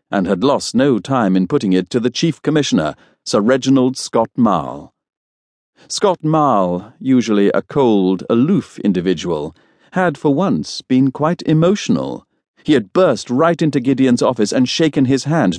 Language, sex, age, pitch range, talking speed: English, male, 50-69, 95-140 Hz, 155 wpm